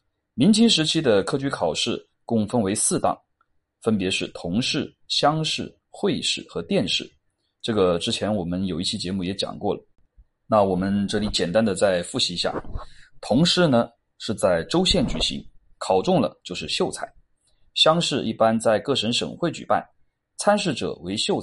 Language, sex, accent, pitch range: Chinese, male, native, 95-140 Hz